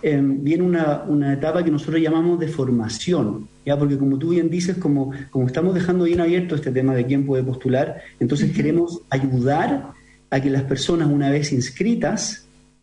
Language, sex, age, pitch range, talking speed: Spanish, male, 40-59, 130-160 Hz, 175 wpm